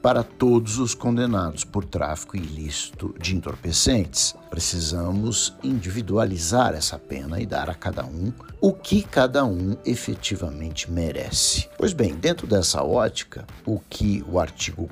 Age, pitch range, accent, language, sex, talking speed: 60-79, 85-120 Hz, Brazilian, Portuguese, male, 135 wpm